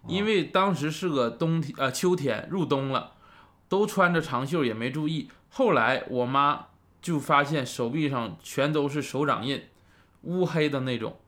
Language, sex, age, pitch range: Chinese, male, 20-39, 120-165 Hz